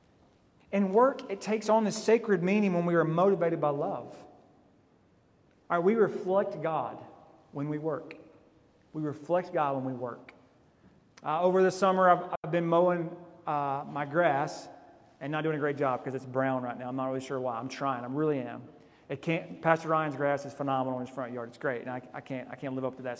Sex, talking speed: male, 215 wpm